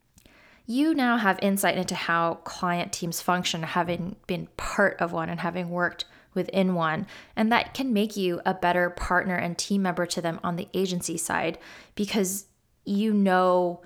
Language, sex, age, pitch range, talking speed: English, female, 20-39, 170-195 Hz, 170 wpm